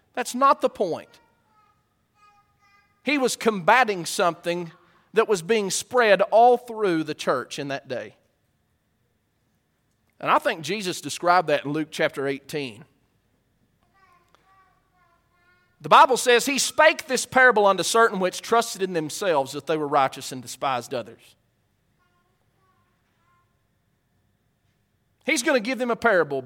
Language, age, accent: English, 40-59, American